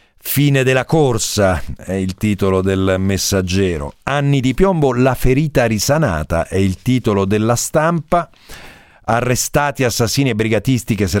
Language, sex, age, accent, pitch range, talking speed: Italian, male, 50-69, native, 90-115 Hz, 135 wpm